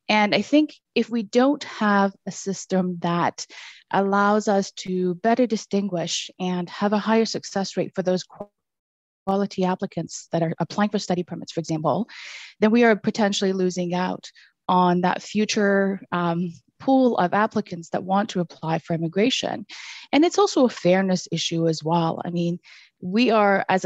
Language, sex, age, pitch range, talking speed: English, female, 30-49, 180-210 Hz, 165 wpm